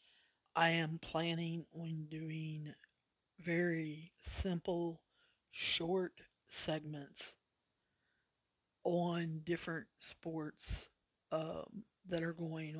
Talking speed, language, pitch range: 75 wpm, English, 155-170 Hz